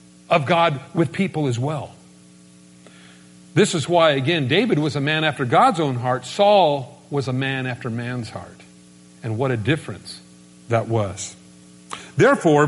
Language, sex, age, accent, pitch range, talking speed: English, male, 50-69, American, 120-190 Hz, 150 wpm